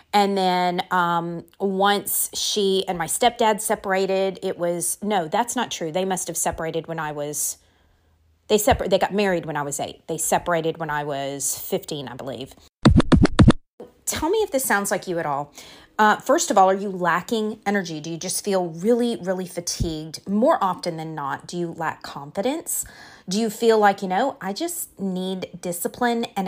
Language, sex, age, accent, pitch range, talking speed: English, female, 30-49, American, 175-220 Hz, 185 wpm